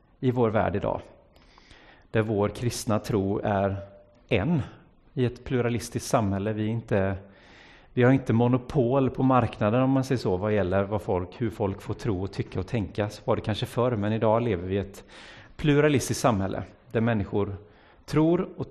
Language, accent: Swedish, native